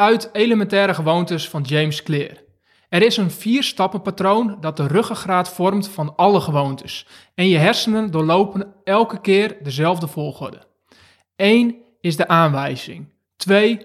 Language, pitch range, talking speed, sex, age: Dutch, 160-205 Hz, 130 wpm, male, 20-39